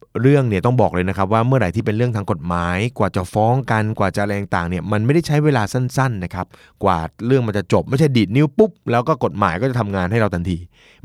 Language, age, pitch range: Thai, 20-39, 90-110 Hz